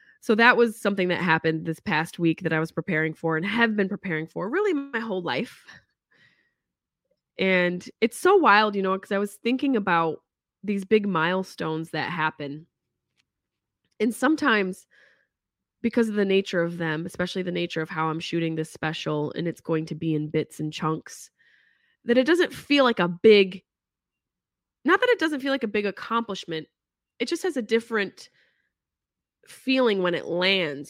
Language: English